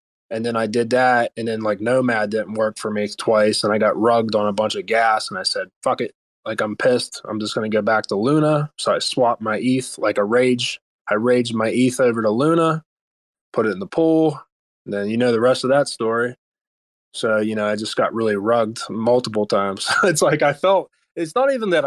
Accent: American